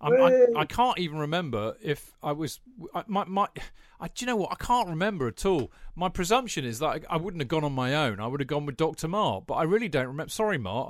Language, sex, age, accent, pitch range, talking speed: English, male, 40-59, British, 125-160 Hz, 265 wpm